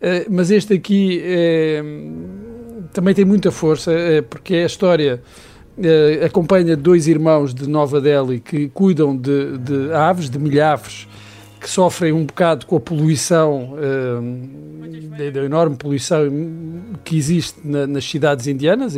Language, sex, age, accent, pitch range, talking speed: Portuguese, male, 50-69, Portuguese, 145-175 Hz, 135 wpm